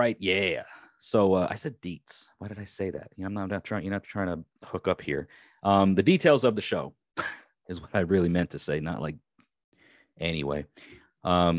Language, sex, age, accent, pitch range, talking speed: English, male, 30-49, American, 85-100 Hz, 205 wpm